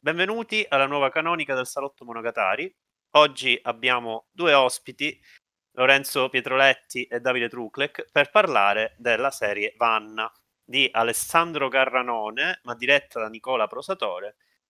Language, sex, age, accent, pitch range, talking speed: Italian, male, 30-49, native, 110-140 Hz, 120 wpm